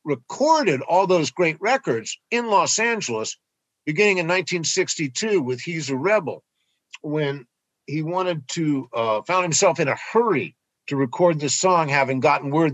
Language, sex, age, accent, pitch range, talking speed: English, male, 50-69, American, 125-175 Hz, 150 wpm